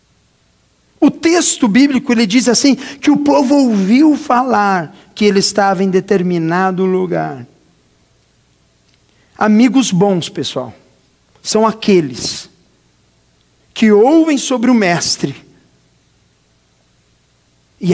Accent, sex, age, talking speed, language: Brazilian, male, 50-69, 95 wpm, Portuguese